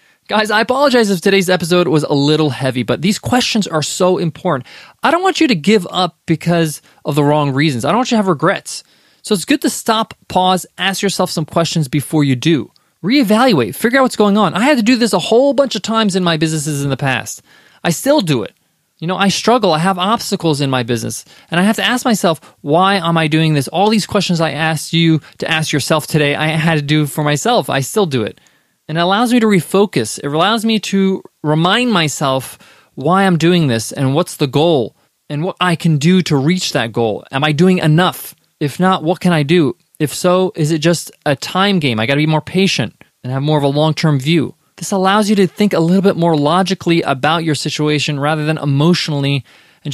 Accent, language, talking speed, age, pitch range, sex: American, English, 230 wpm, 20-39, 150-195 Hz, male